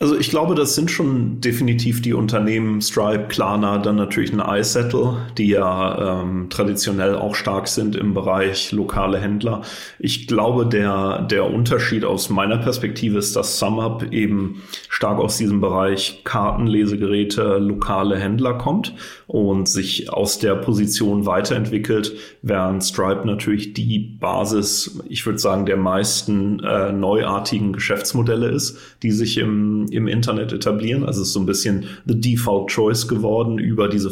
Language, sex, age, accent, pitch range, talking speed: German, male, 30-49, German, 100-115 Hz, 150 wpm